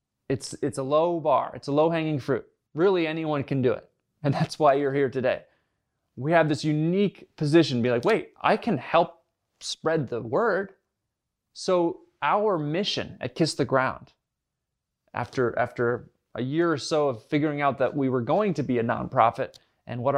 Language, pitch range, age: English, 130-170 Hz, 20-39